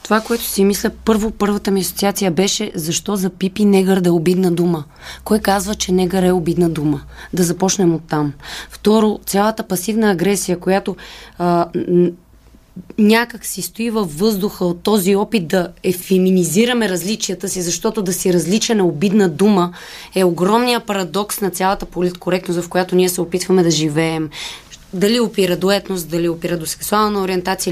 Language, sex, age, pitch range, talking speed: Bulgarian, female, 20-39, 175-205 Hz, 160 wpm